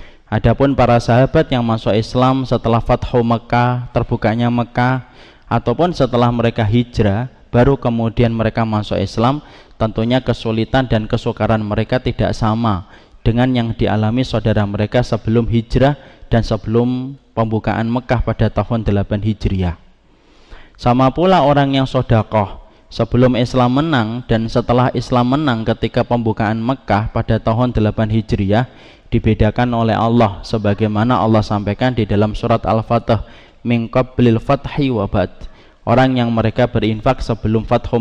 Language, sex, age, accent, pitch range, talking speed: Indonesian, male, 20-39, native, 110-125 Hz, 130 wpm